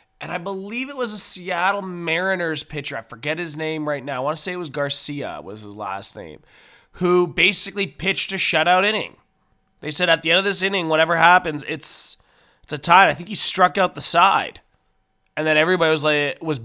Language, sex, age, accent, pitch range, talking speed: English, male, 20-39, American, 140-185 Hz, 215 wpm